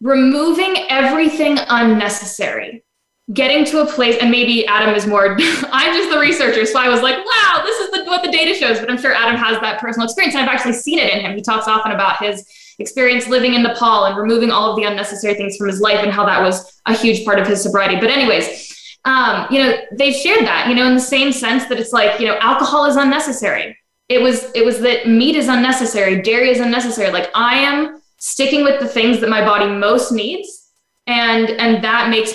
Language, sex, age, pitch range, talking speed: English, female, 10-29, 205-260 Hz, 220 wpm